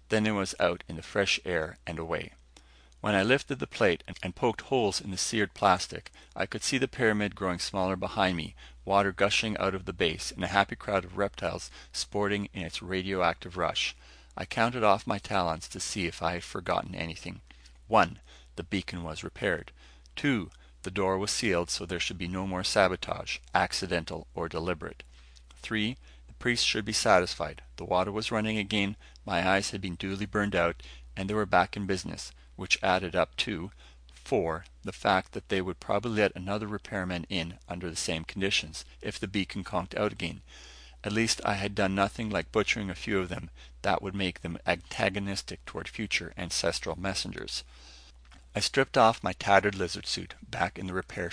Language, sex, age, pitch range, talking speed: English, male, 40-59, 65-100 Hz, 190 wpm